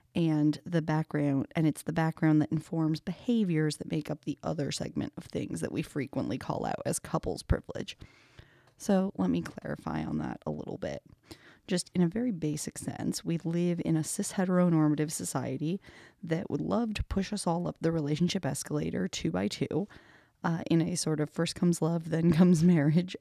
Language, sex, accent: English, female, American